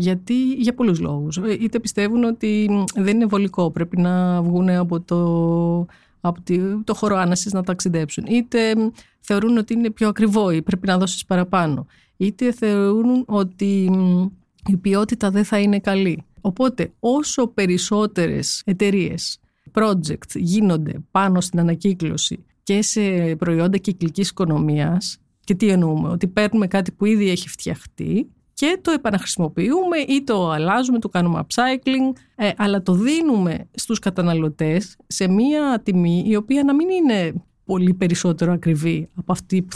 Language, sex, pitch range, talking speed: Greek, female, 175-220 Hz, 140 wpm